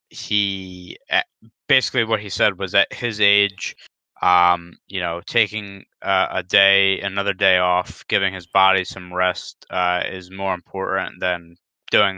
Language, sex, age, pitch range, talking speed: English, male, 20-39, 90-100 Hz, 150 wpm